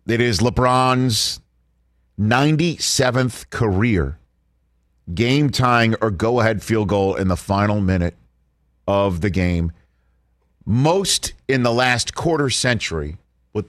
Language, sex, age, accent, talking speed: English, male, 40-59, American, 105 wpm